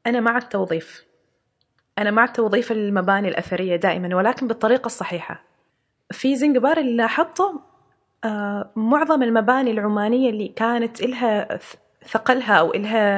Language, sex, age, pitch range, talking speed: Arabic, female, 20-39, 210-260 Hz, 120 wpm